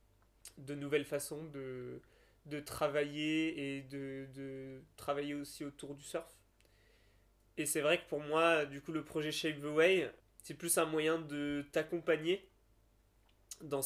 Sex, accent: male, French